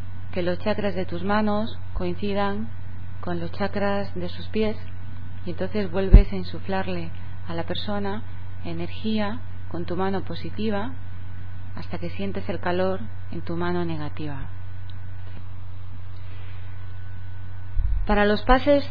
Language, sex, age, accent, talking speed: Spanish, female, 30-49, Spanish, 120 wpm